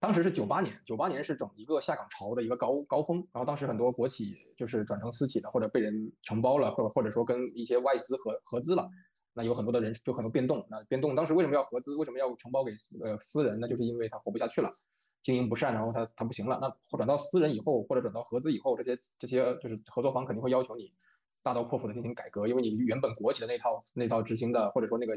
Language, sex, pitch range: Chinese, male, 115-145 Hz